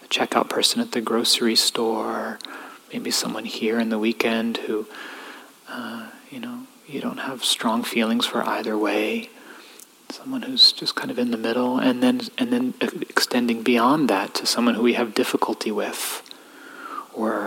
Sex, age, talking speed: male, 30-49, 160 wpm